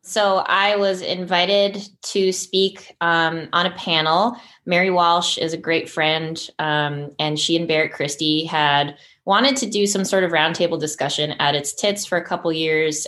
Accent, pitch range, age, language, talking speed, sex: American, 150-175 Hz, 20-39, English, 175 wpm, female